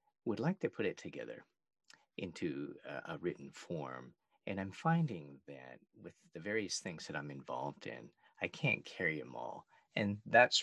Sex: male